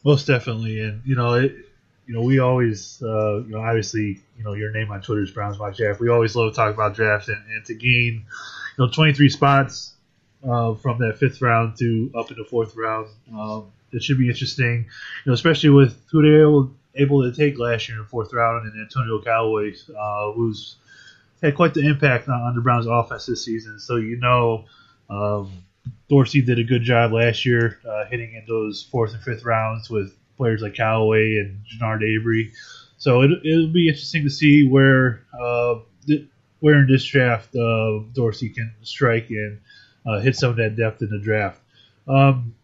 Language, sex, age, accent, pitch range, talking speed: English, male, 20-39, American, 110-135 Hz, 200 wpm